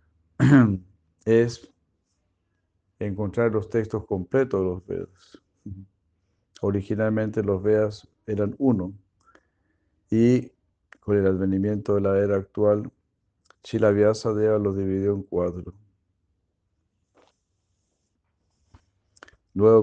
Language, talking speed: Spanish, 85 wpm